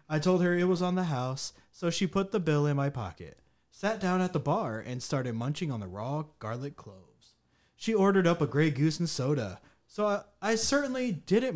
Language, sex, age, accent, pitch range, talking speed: English, male, 20-39, American, 115-175 Hz, 220 wpm